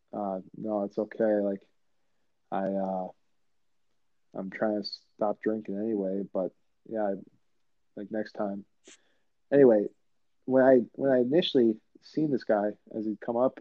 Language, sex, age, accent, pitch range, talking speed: English, male, 20-39, American, 100-115 Hz, 140 wpm